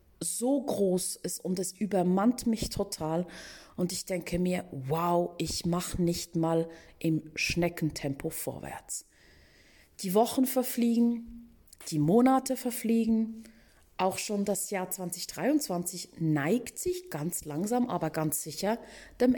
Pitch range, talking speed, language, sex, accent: 170-230 Hz, 120 wpm, German, female, German